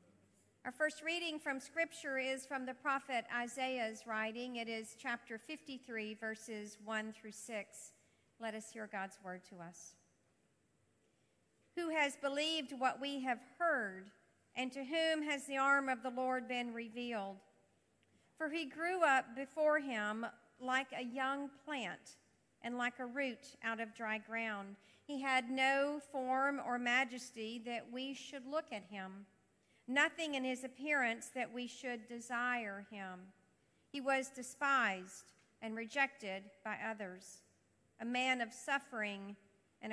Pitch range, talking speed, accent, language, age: 220-270 Hz, 145 wpm, American, English, 50-69